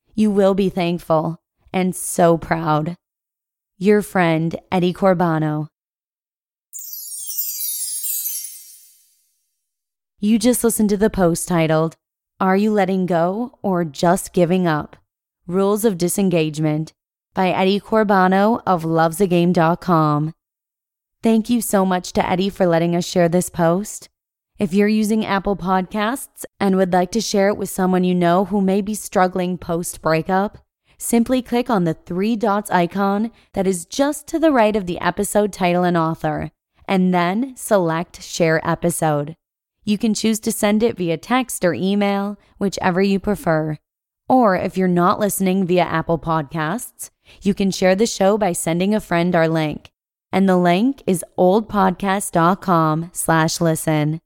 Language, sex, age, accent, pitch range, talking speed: English, female, 20-39, American, 165-205 Hz, 140 wpm